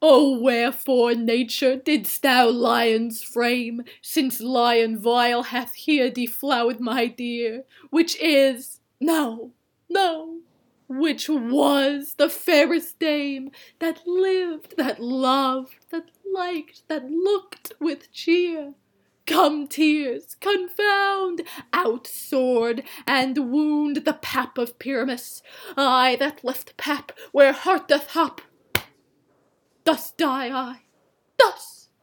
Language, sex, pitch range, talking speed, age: English, female, 245-325 Hz, 105 wpm, 20-39